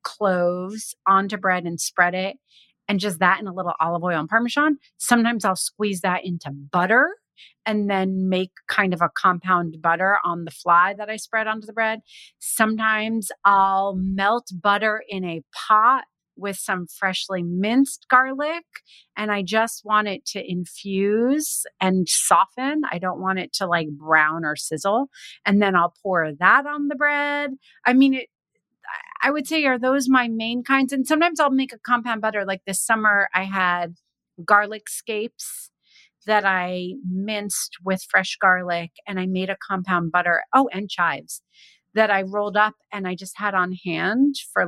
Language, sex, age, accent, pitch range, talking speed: English, female, 30-49, American, 180-230 Hz, 170 wpm